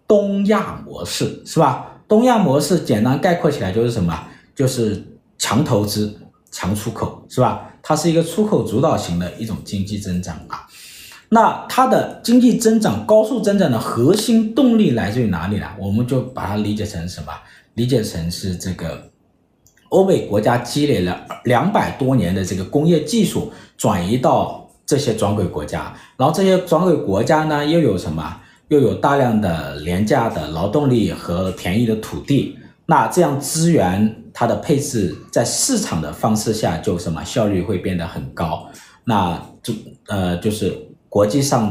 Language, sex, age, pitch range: Chinese, male, 50-69, 95-150 Hz